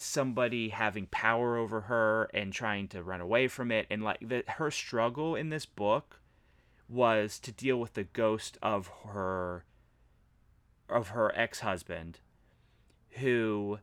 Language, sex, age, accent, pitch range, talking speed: English, male, 30-49, American, 100-125 Hz, 140 wpm